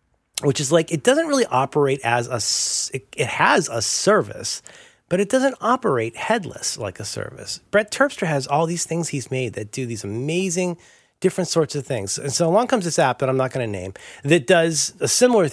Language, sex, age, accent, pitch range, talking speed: English, male, 30-49, American, 125-190 Hz, 205 wpm